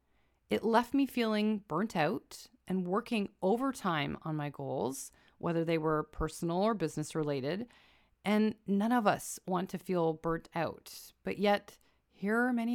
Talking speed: 150 wpm